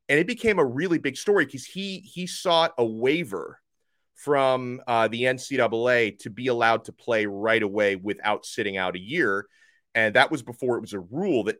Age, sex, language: 30-49, male, English